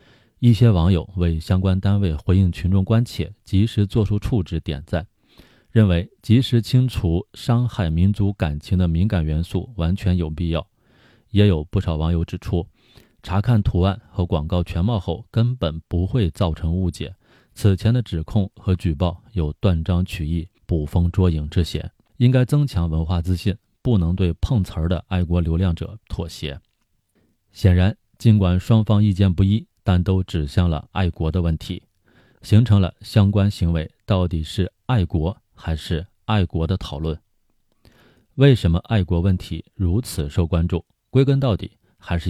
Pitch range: 85-110 Hz